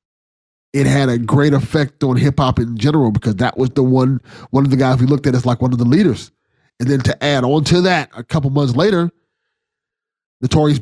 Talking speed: 220 wpm